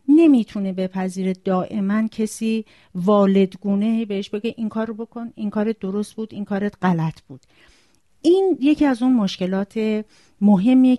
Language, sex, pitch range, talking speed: Persian, female, 185-235 Hz, 140 wpm